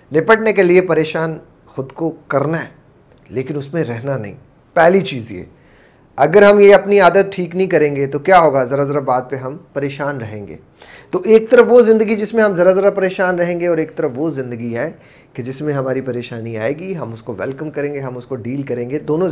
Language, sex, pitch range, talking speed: Urdu, male, 130-160 Hz, 235 wpm